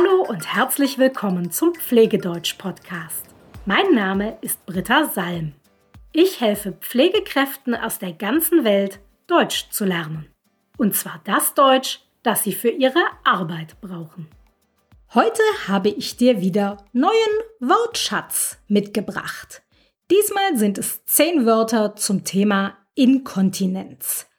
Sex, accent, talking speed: female, German, 115 wpm